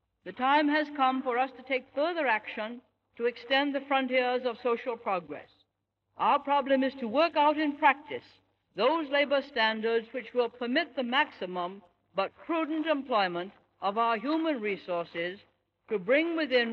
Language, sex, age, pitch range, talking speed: French, female, 60-79, 195-275 Hz, 155 wpm